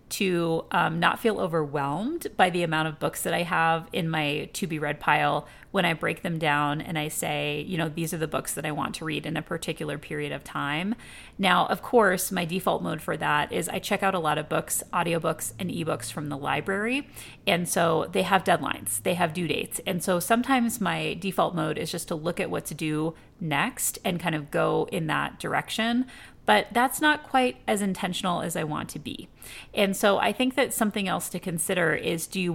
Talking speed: 220 wpm